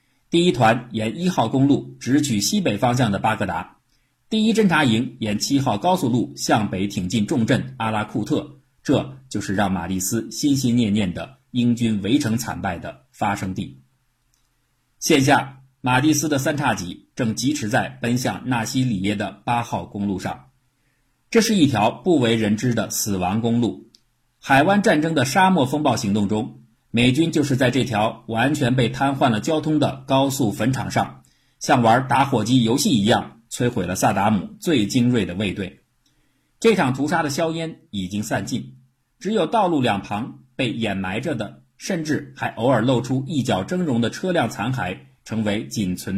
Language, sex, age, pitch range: Chinese, male, 50-69, 105-135 Hz